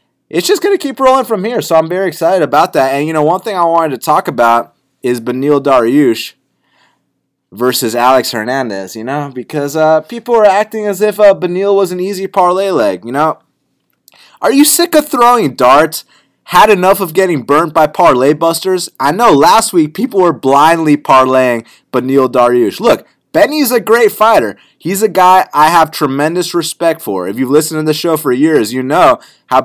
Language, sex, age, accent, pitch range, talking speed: English, male, 20-39, American, 130-180 Hz, 195 wpm